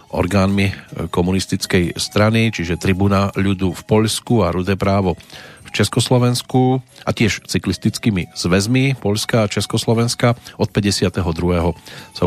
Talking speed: 110 wpm